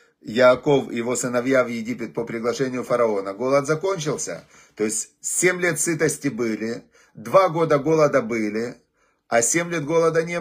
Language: Russian